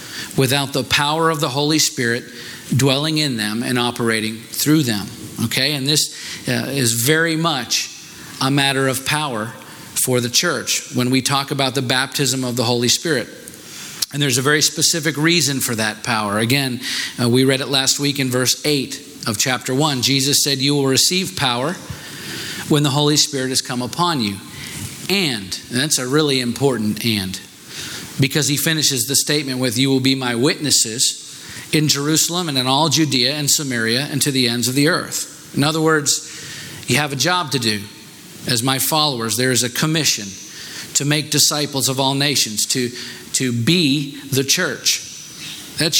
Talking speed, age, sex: 175 wpm, 40-59, male